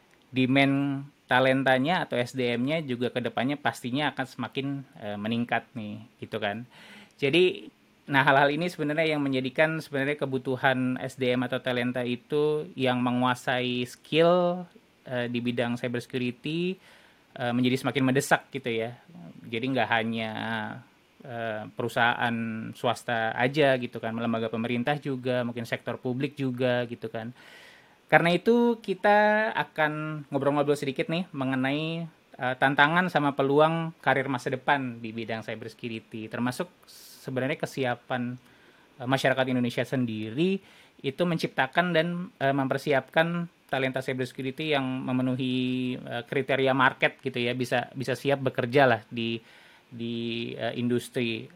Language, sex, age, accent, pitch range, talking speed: English, male, 20-39, Indonesian, 120-145 Hz, 120 wpm